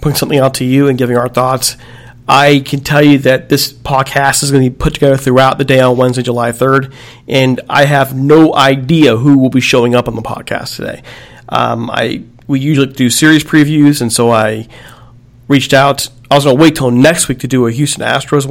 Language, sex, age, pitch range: English, male, 40-59, 125-140 Hz